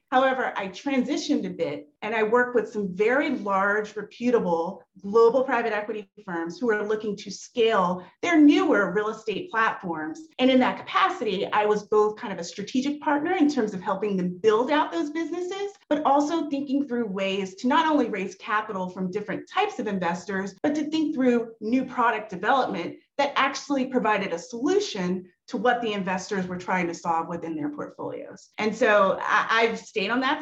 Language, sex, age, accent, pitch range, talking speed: English, female, 30-49, American, 195-265 Hz, 180 wpm